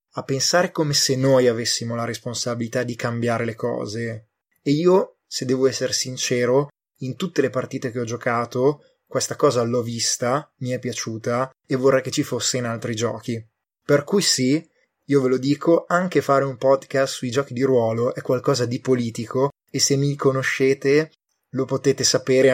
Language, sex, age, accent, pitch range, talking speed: Italian, male, 20-39, native, 120-135 Hz, 175 wpm